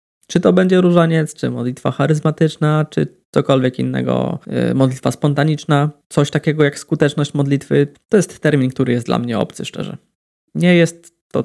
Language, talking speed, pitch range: Polish, 150 wpm, 125-150 Hz